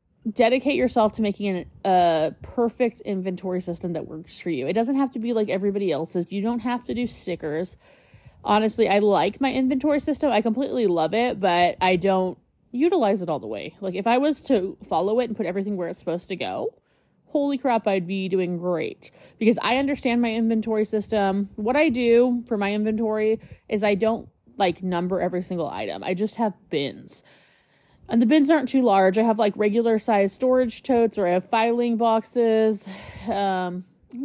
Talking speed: 190 wpm